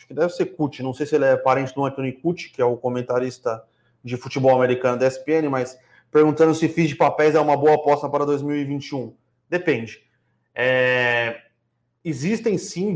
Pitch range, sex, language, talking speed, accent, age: 135-170 Hz, male, Portuguese, 180 wpm, Brazilian, 30-49